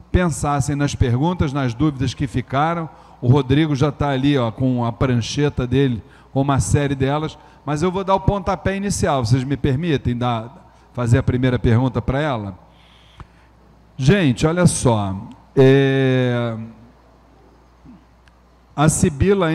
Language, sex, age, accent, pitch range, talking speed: Portuguese, male, 40-59, Brazilian, 110-145 Hz, 135 wpm